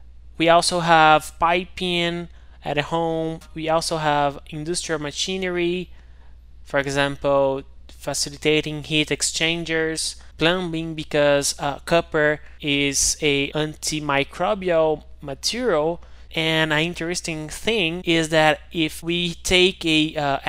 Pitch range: 135-165 Hz